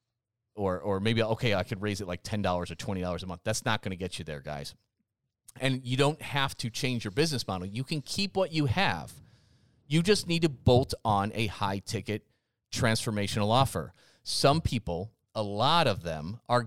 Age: 30-49